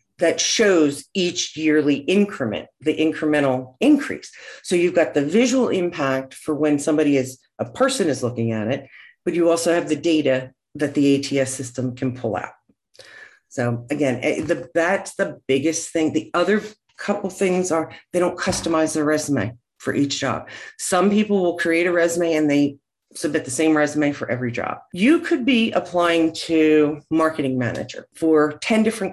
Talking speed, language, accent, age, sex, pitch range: 165 wpm, English, American, 50-69, female, 135-180 Hz